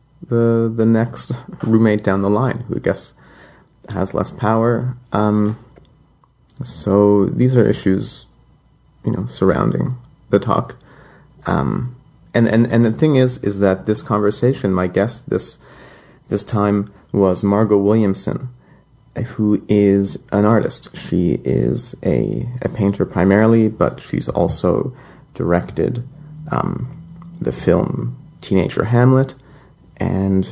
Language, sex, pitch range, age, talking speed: English, male, 100-130 Hz, 30-49, 120 wpm